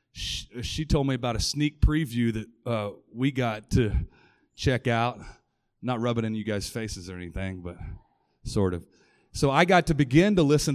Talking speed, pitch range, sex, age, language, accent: 190 wpm, 115-145 Hz, male, 30-49, English, American